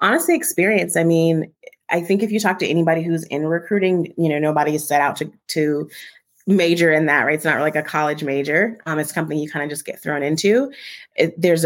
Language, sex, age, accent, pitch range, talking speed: English, female, 30-49, American, 150-170 Hz, 220 wpm